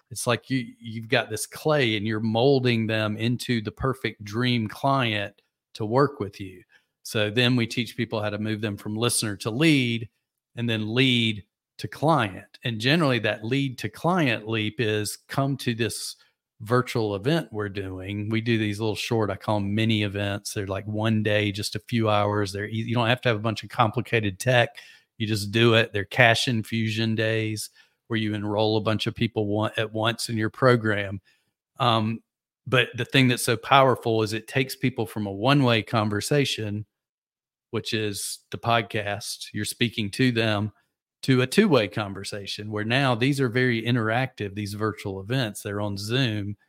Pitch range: 105-125 Hz